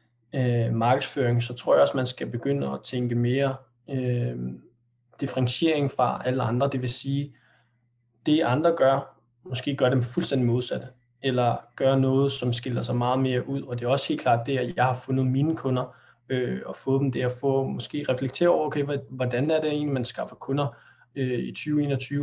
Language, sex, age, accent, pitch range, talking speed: Danish, male, 20-39, native, 120-140 Hz, 185 wpm